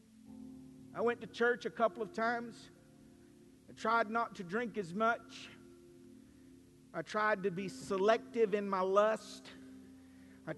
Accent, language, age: American, English, 50-69